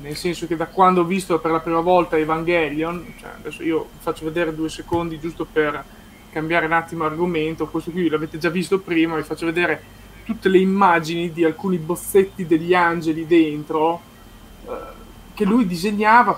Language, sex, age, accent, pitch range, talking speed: Italian, male, 20-39, native, 160-185 Hz, 175 wpm